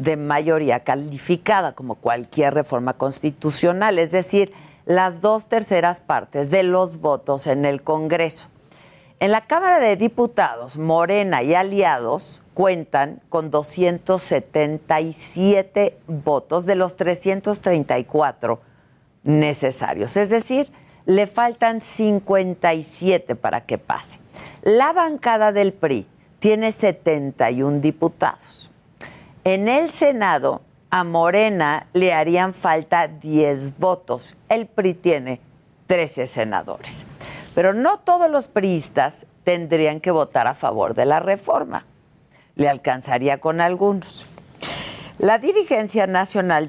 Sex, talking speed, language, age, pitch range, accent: female, 110 wpm, Spanish, 50-69, 150-200 Hz, Mexican